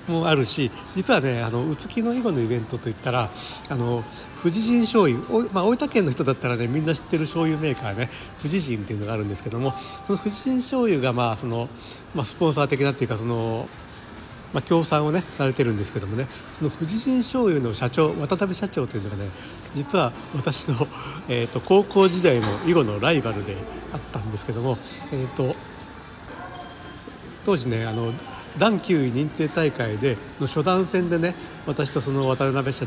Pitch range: 120-165 Hz